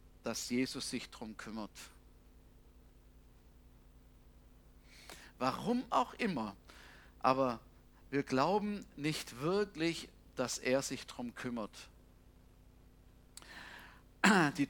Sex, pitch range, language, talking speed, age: male, 135-225 Hz, German, 80 wpm, 50-69